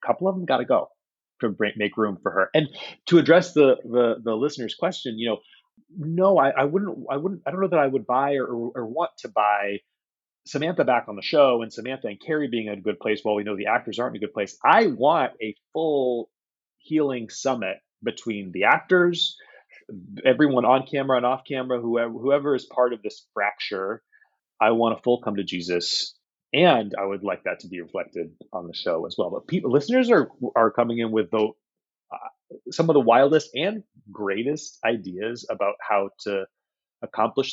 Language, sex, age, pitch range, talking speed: English, male, 30-49, 105-150 Hz, 205 wpm